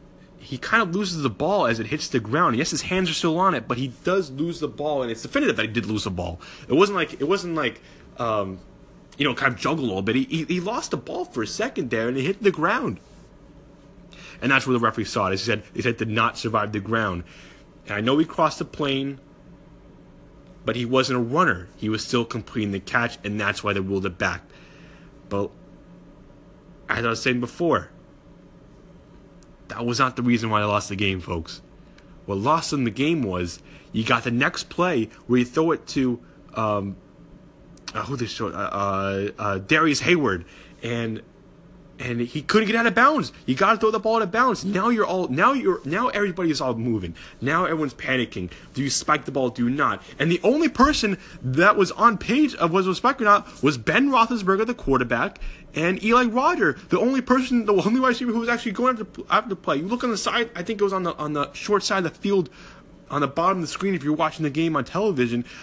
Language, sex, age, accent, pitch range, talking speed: English, male, 30-49, American, 115-195 Hz, 230 wpm